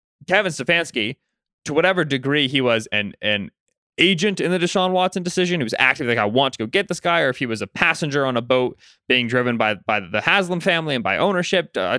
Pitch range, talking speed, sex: 120-155 Hz, 230 wpm, male